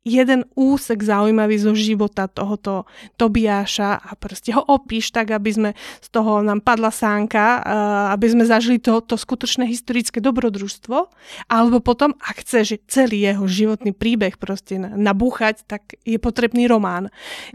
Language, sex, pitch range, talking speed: Slovak, female, 215-250 Hz, 140 wpm